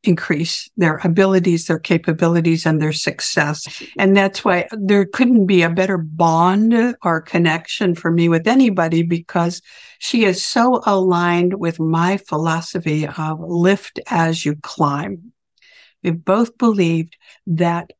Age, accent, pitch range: 60-79, American, 170-200 Hz